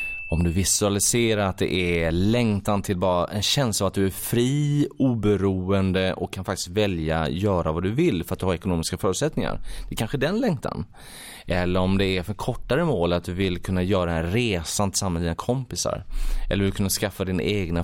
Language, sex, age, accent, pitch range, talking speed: Swedish, male, 20-39, native, 85-115 Hz, 205 wpm